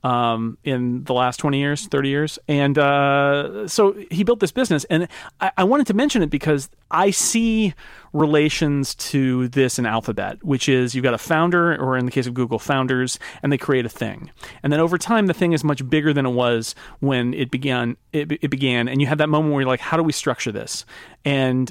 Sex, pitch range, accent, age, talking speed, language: male, 125-165 Hz, American, 40-59, 220 wpm, English